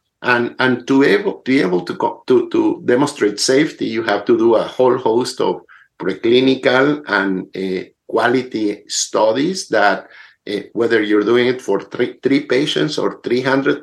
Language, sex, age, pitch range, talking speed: English, male, 50-69, 110-175 Hz, 165 wpm